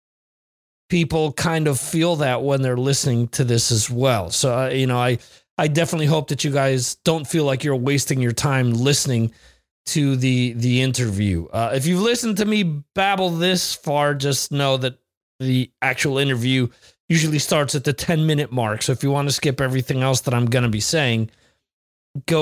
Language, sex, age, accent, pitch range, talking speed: English, male, 30-49, American, 120-165 Hz, 190 wpm